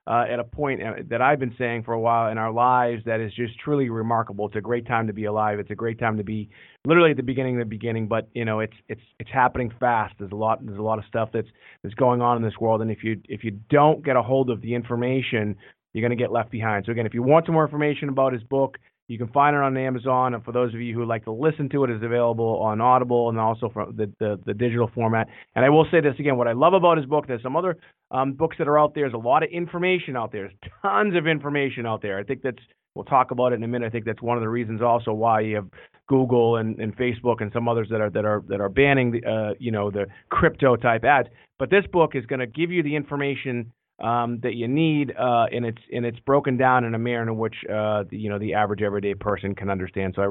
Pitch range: 110-135 Hz